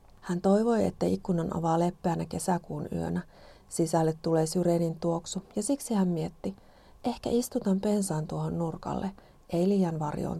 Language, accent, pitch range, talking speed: Finnish, native, 165-195 Hz, 140 wpm